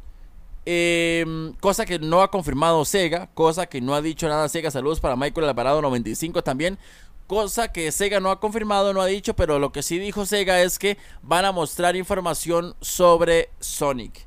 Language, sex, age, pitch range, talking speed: Spanish, male, 20-39, 135-180 Hz, 180 wpm